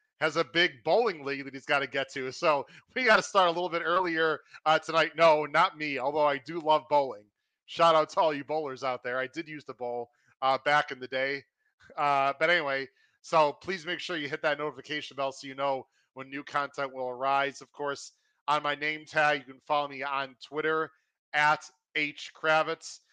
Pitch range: 140-165 Hz